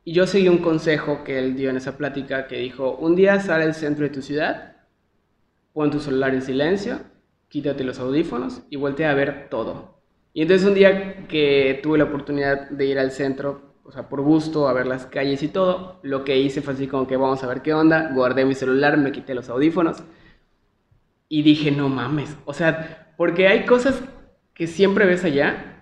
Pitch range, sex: 135-160 Hz, male